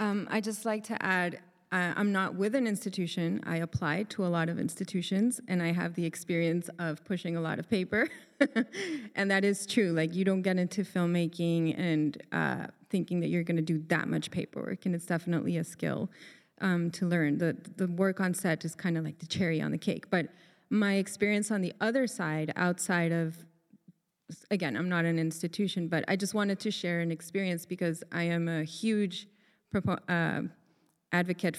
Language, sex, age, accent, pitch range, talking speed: English, female, 30-49, American, 165-195 Hz, 195 wpm